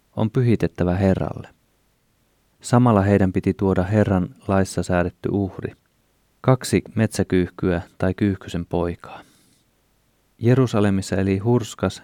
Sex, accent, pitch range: male, native, 90-105 Hz